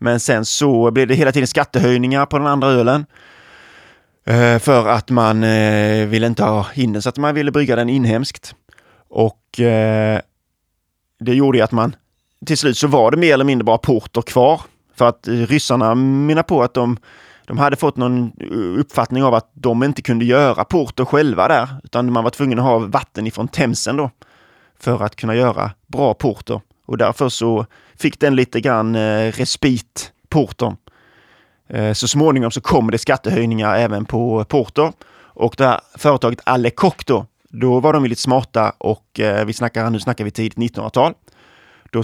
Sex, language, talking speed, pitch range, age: male, Swedish, 170 wpm, 110-130 Hz, 20-39